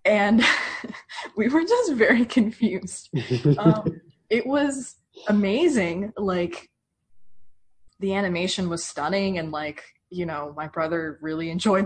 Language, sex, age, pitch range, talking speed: English, female, 20-39, 155-205 Hz, 115 wpm